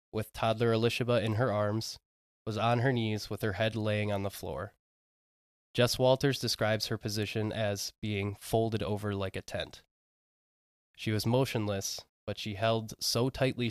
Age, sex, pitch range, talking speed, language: 20-39, male, 100-120 Hz, 160 wpm, English